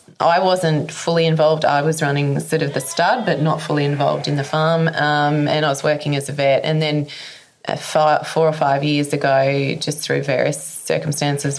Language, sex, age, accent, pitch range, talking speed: English, female, 20-39, Australian, 145-160 Hz, 200 wpm